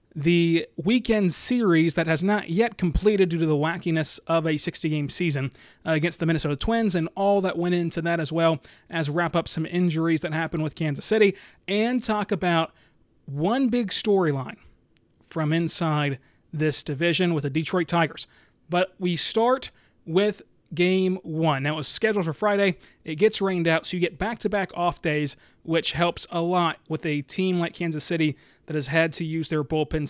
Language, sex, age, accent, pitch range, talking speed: English, male, 30-49, American, 160-185 Hz, 185 wpm